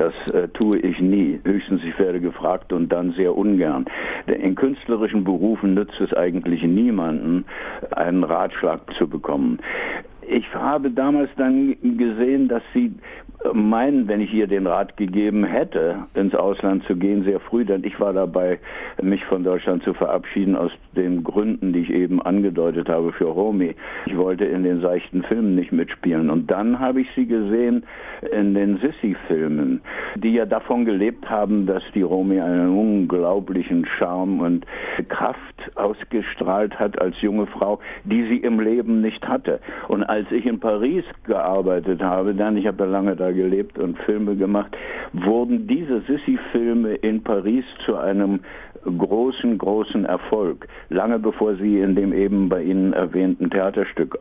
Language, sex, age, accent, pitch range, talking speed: German, male, 60-79, German, 90-115 Hz, 155 wpm